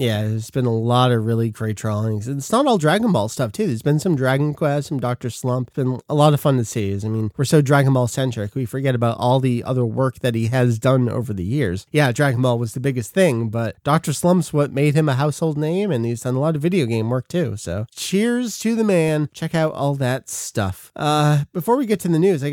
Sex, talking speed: male, 255 wpm